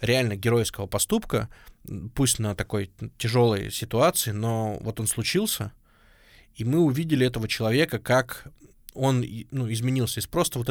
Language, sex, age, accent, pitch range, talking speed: Russian, male, 20-39, native, 110-130 Hz, 135 wpm